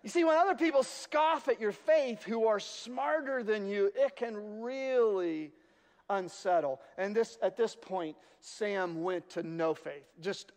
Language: English